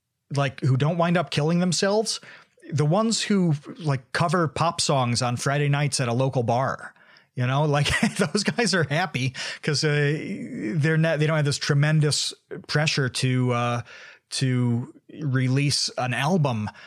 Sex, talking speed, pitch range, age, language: male, 155 wpm, 125-155 Hz, 30-49, English